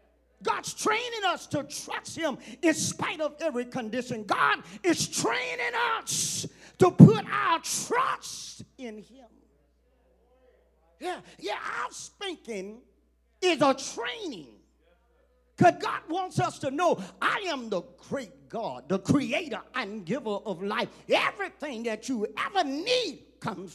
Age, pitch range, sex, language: 40-59, 180-300 Hz, male, English